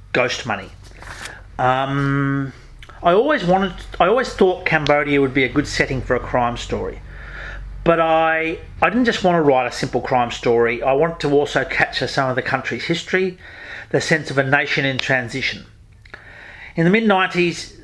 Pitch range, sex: 125-160 Hz, male